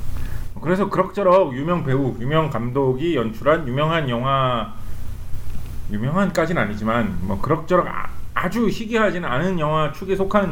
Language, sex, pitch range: English, male, 105-155 Hz